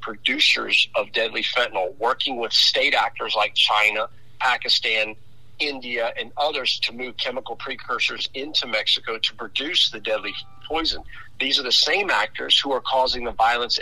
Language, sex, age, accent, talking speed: English, male, 50-69, American, 150 wpm